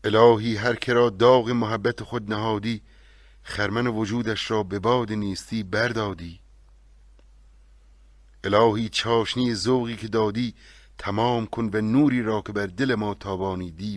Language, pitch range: Persian, 70-115 Hz